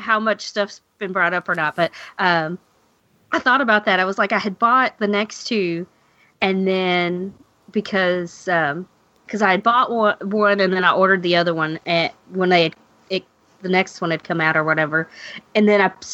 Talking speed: 210 wpm